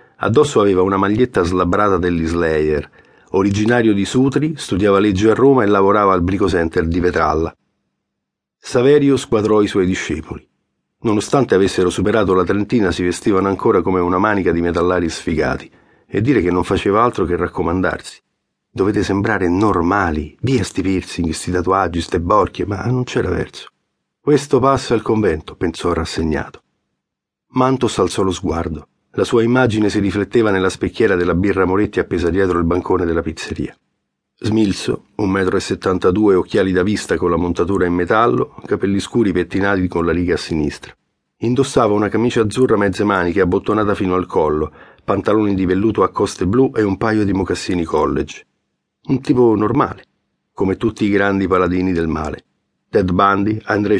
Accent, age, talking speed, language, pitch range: native, 40-59, 160 wpm, Italian, 90-110 Hz